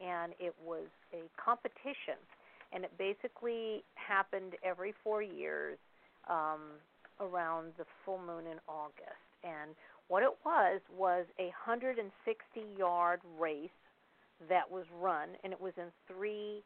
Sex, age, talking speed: female, 50-69, 125 wpm